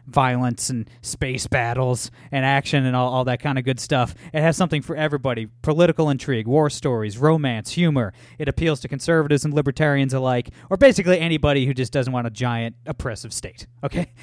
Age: 20-39